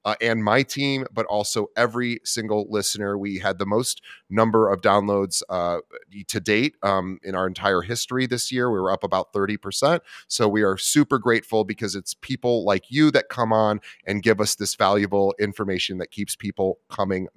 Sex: male